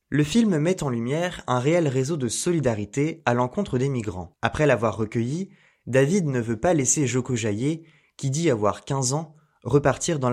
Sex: male